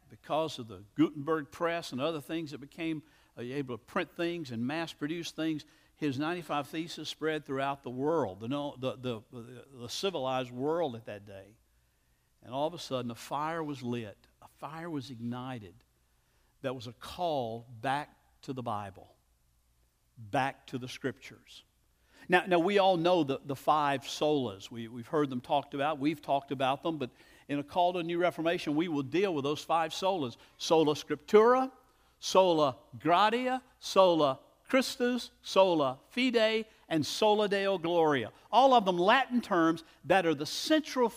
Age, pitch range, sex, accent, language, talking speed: 60-79, 130-175 Hz, male, American, English, 165 wpm